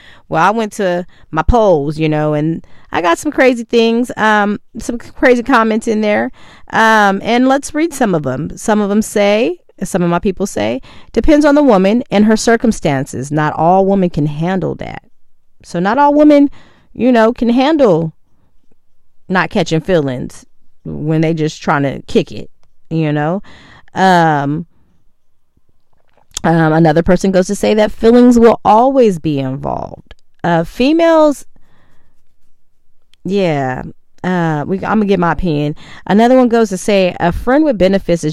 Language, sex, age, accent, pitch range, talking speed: English, female, 30-49, American, 165-240 Hz, 160 wpm